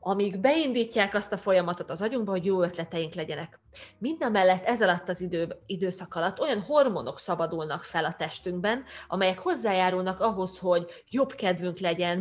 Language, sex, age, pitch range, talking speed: Hungarian, female, 30-49, 175-220 Hz, 160 wpm